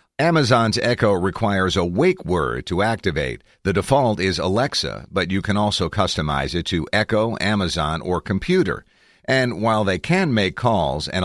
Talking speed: 160 wpm